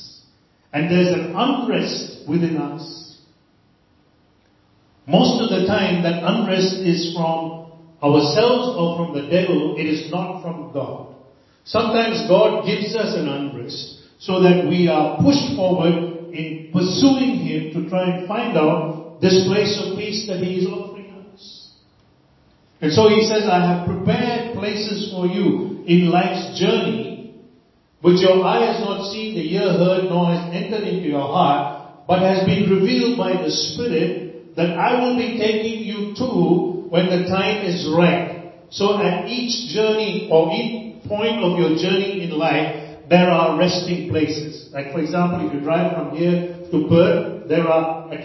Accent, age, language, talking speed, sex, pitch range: American, 40-59, English, 160 wpm, male, 160-200 Hz